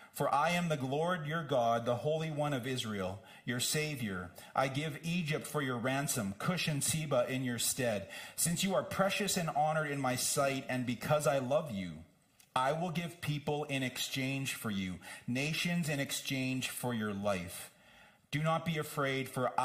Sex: male